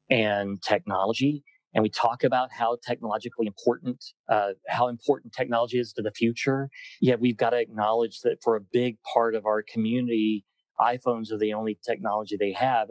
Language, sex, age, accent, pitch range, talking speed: English, male, 30-49, American, 105-130 Hz, 170 wpm